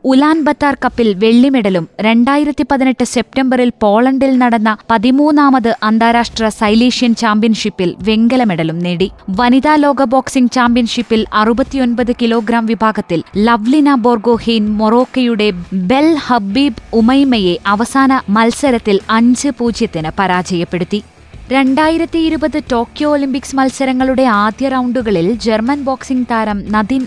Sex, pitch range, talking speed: female, 205-260 Hz, 100 wpm